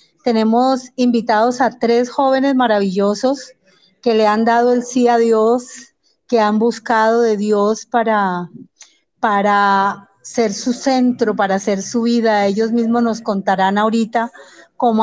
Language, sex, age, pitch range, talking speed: Spanish, female, 30-49, 215-245 Hz, 135 wpm